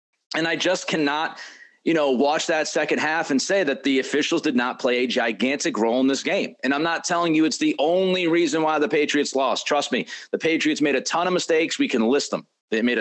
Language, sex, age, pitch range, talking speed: English, male, 30-49, 150-195 Hz, 240 wpm